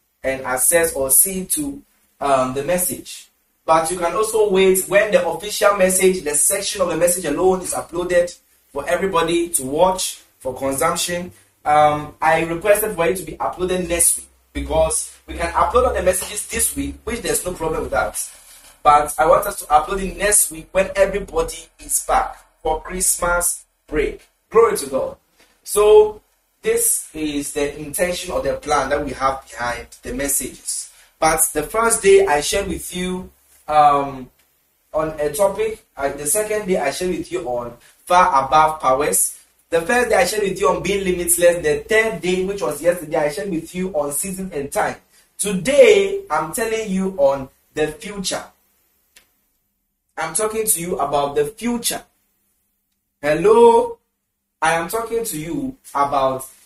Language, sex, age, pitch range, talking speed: English, male, 30-49, 150-200 Hz, 165 wpm